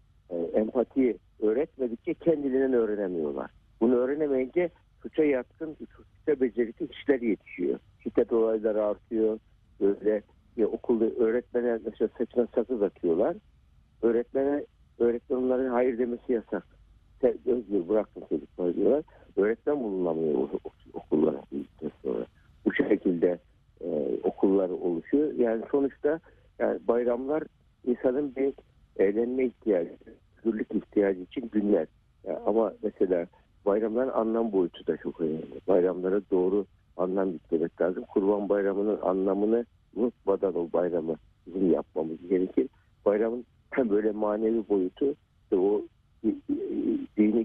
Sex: male